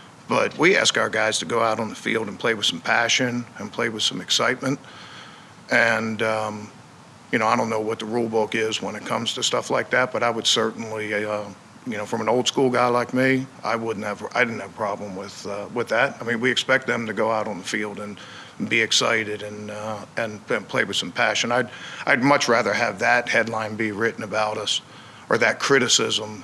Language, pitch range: English, 105-115 Hz